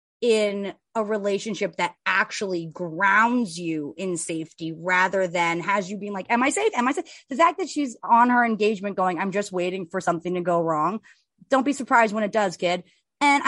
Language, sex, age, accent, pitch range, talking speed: English, female, 30-49, American, 185-255 Hz, 200 wpm